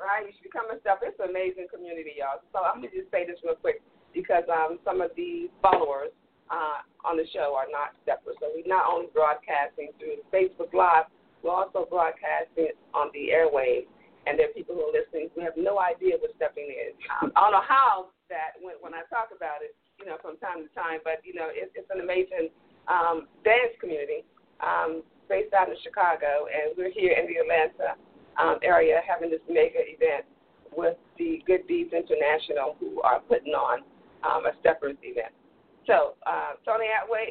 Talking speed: 200 wpm